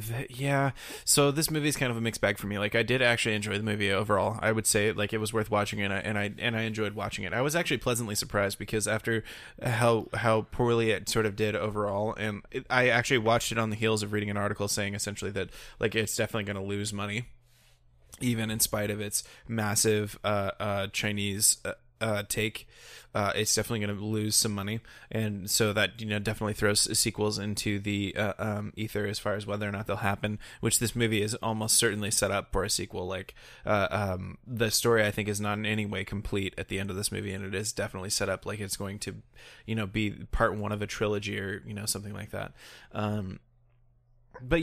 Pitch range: 105-115 Hz